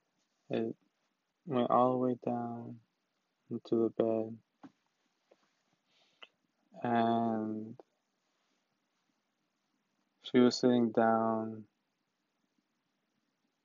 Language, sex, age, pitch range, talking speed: English, male, 20-39, 110-115 Hz, 60 wpm